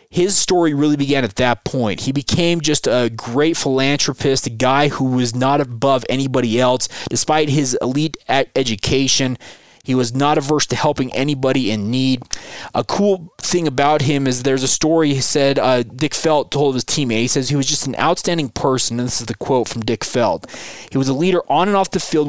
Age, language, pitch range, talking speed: 20-39, English, 125-155 Hz, 205 wpm